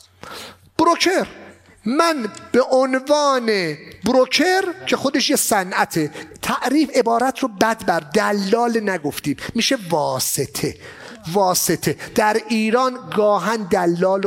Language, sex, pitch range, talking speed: English, male, 185-260 Hz, 95 wpm